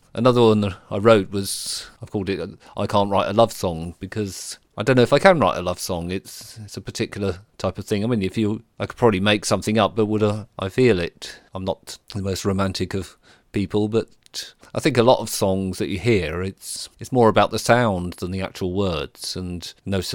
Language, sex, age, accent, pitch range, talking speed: English, male, 40-59, British, 95-110 Hz, 230 wpm